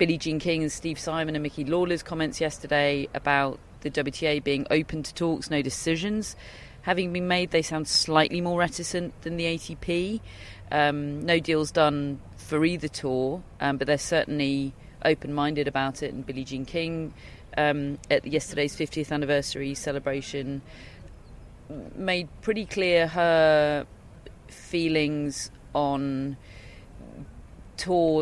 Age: 40-59